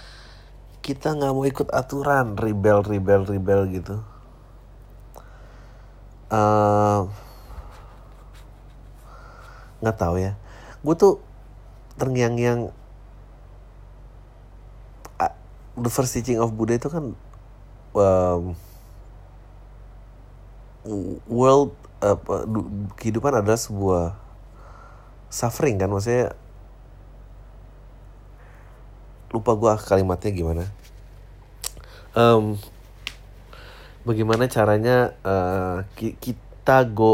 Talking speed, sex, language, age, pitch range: 75 wpm, male, Indonesian, 30-49, 95-115 Hz